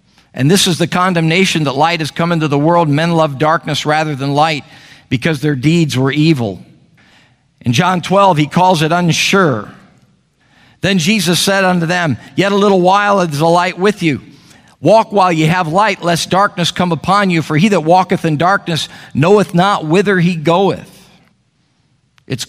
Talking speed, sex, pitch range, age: 175 wpm, male, 145-185 Hz, 50-69